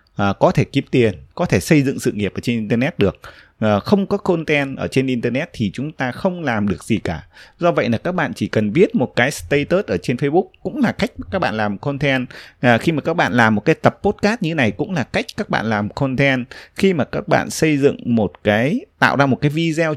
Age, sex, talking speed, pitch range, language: 20-39, male, 240 wpm, 105-145 Hz, Vietnamese